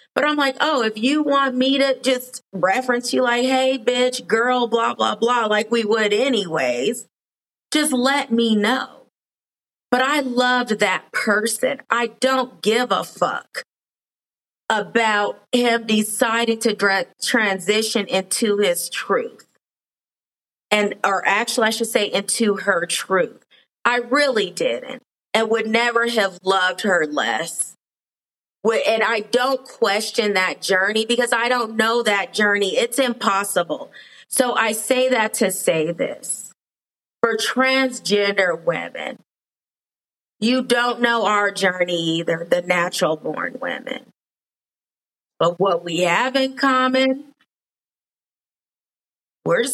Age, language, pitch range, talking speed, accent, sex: 30-49, English, 205-250 Hz, 125 wpm, American, female